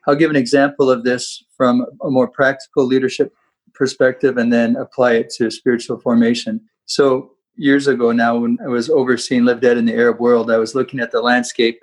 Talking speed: 200 wpm